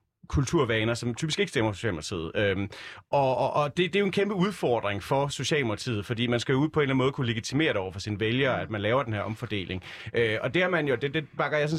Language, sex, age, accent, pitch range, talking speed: Danish, male, 30-49, native, 115-150 Hz, 270 wpm